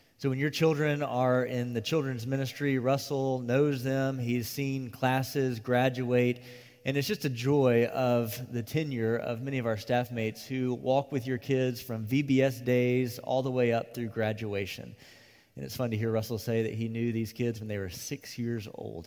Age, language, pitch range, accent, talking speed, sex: 30-49, English, 110-130 Hz, American, 195 wpm, male